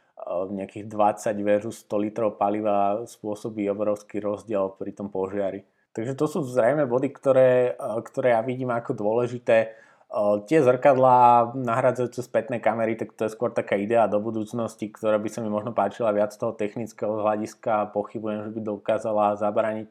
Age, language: 20-39, Slovak